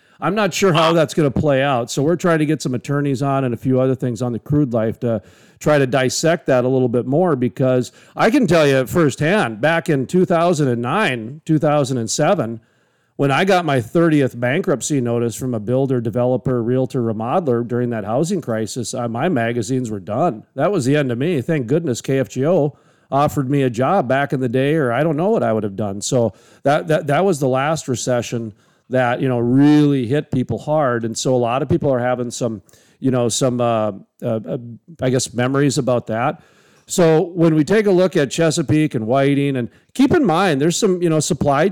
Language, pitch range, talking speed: English, 120-155 Hz, 210 wpm